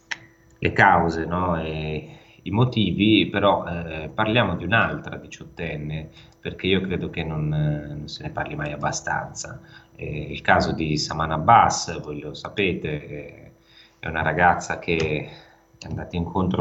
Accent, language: native, Italian